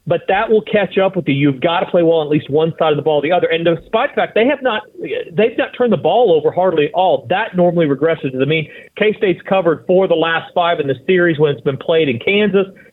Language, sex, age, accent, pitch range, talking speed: English, male, 40-59, American, 155-195 Hz, 270 wpm